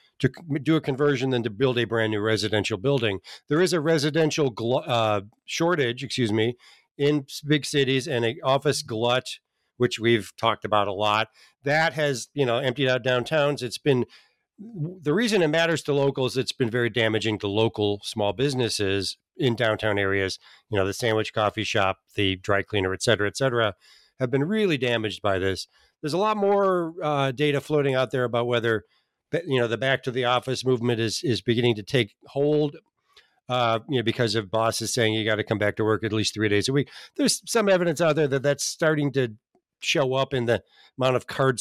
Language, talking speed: English, 200 wpm